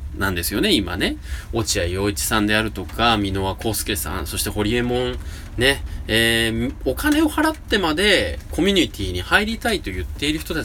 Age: 20-39